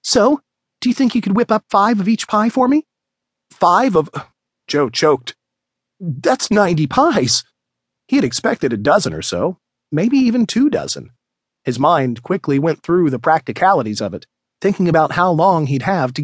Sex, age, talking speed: male, 40-59, 175 wpm